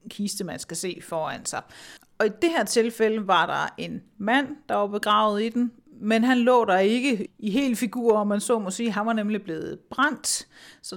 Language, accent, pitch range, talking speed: Danish, native, 190-235 Hz, 215 wpm